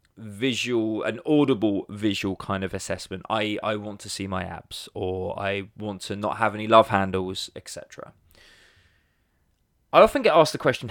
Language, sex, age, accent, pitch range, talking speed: English, male, 20-39, British, 100-115 Hz, 165 wpm